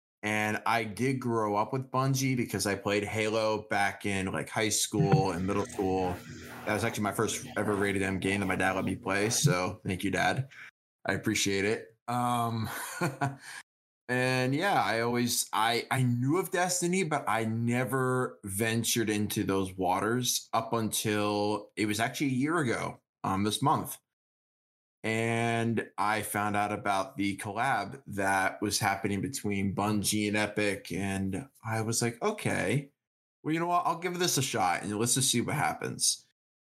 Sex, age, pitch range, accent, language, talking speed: male, 20-39, 100-120 Hz, American, English, 170 wpm